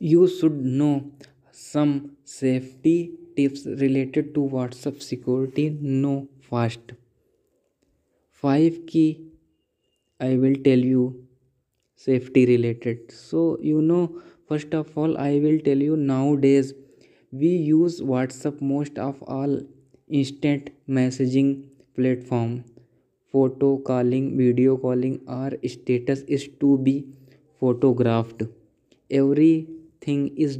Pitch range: 130-155 Hz